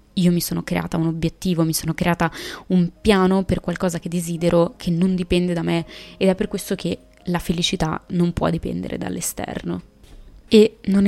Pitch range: 170-195 Hz